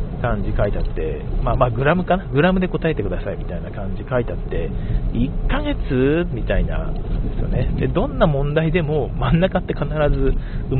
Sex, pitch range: male, 100-160 Hz